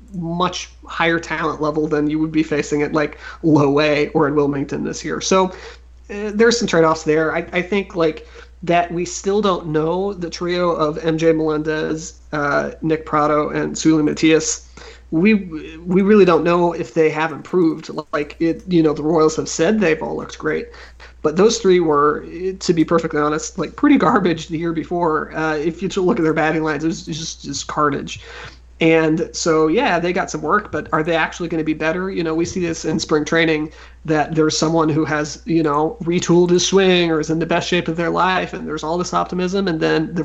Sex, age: male, 30-49